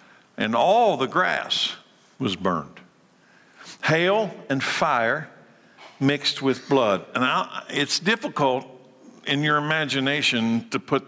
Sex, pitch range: male, 130-170 Hz